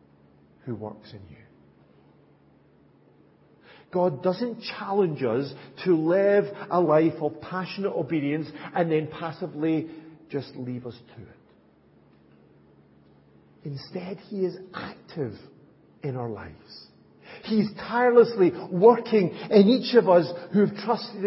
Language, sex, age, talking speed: English, male, 50-69, 115 wpm